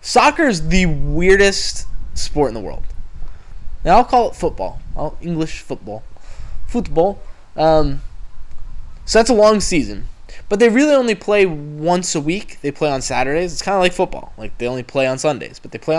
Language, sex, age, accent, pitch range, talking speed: English, male, 20-39, American, 135-195 Hz, 185 wpm